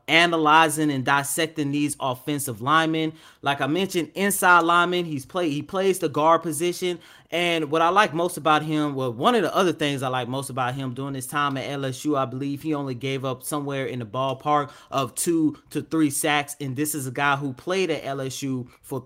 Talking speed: 210 wpm